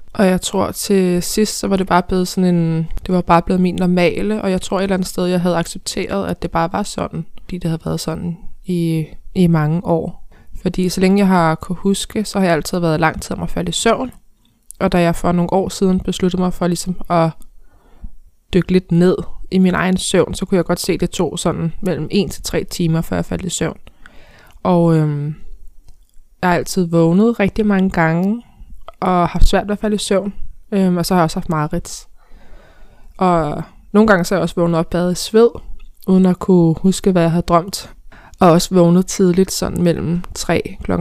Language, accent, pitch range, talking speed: Danish, native, 170-190 Hz, 220 wpm